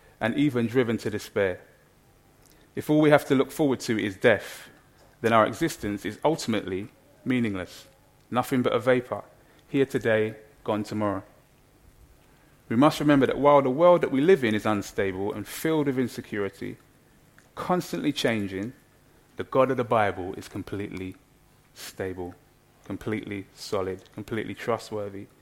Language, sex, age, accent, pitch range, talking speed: English, male, 30-49, British, 105-140 Hz, 140 wpm